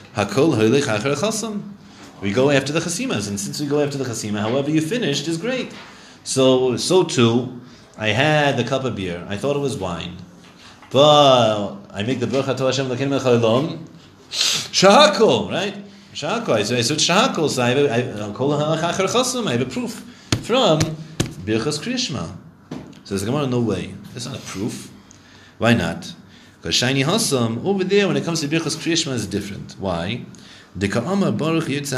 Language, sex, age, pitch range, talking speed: English, male, 30-49, 110-160 Hz, 150 wpm